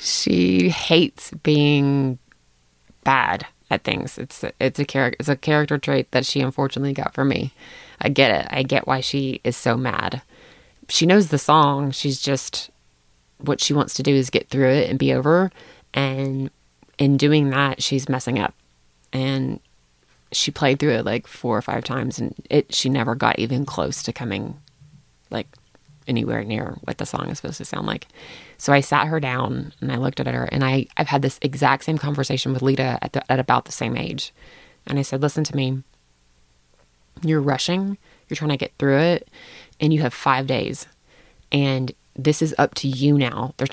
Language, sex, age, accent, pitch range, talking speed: English, female, 20-39, American, 130-150 Hz, 190 wpm